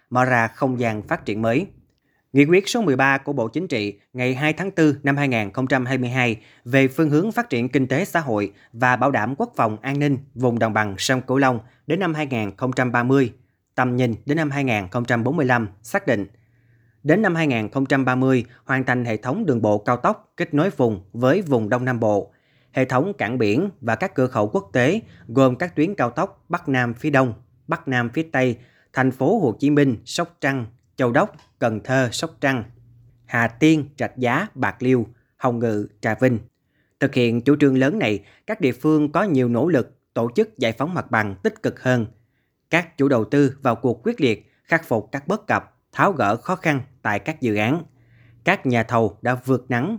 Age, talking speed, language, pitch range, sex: 20-39, 200 wpm, Vietnamese, 120-145 Hz, male